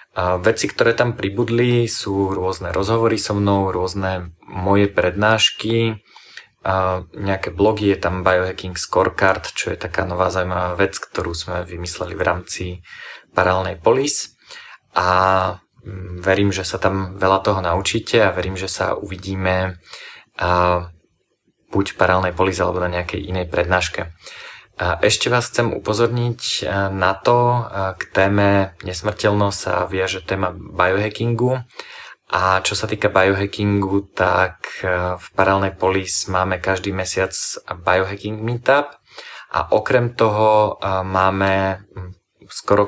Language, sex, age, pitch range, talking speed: Slovak, male, 20-39, 90-100 Hz, 120 wpm